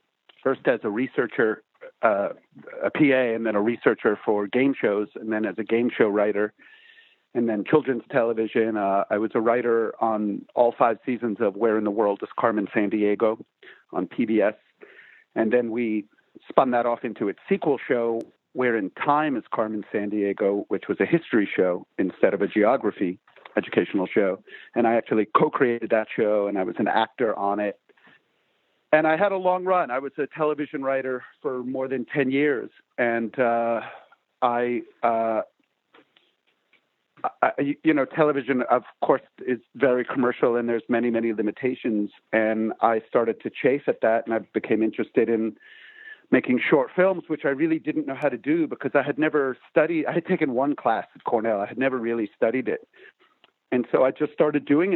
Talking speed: 180 wpm